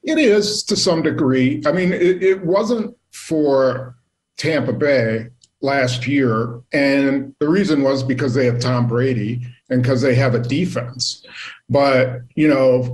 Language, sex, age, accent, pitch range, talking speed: English, male, 50-69, American, 125-145 Hz, 155 wpm